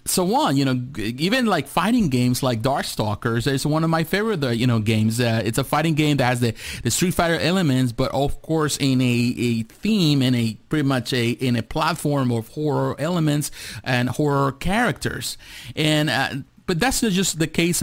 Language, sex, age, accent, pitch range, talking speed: English, male, 30-49, American, 125-150 Hz, 195 wpm